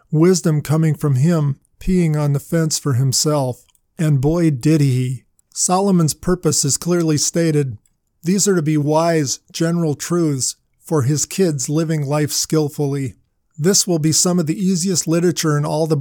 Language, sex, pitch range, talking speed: English, male, 145-175 Hz, 160 wpm